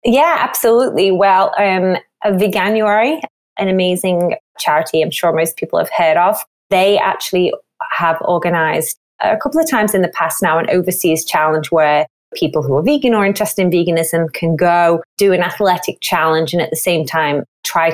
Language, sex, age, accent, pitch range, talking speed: English, female, 30-49, British, 170-225 Hz, 170 wpm